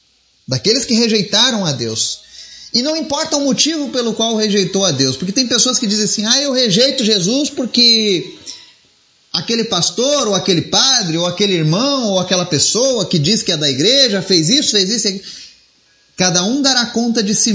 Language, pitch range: Portuguese, 155-245 Hz